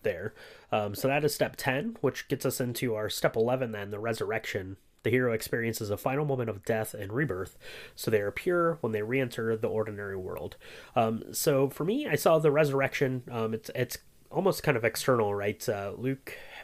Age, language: 30-49, English